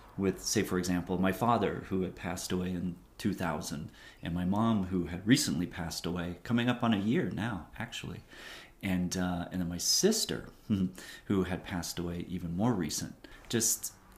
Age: 30-49